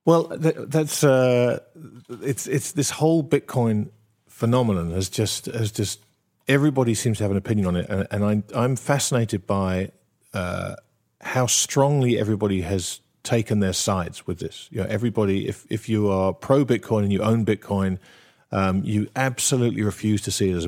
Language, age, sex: English, 50-69, male